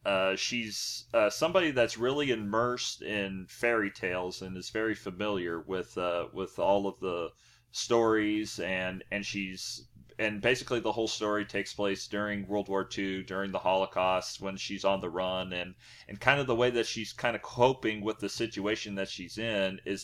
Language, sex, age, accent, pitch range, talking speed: English, male, 30-49, American, 95-120 Hz, 185 wpm